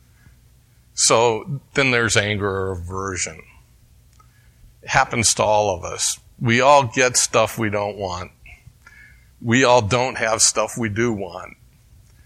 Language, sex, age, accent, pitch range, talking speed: English, male, 50-69, American, 95-115 Hz, 130 wpm